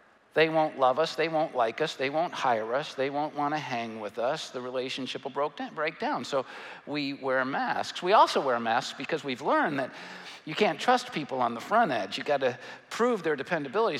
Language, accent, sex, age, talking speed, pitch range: English, American, male, 50-69, 220 wpm, 120-160 Hz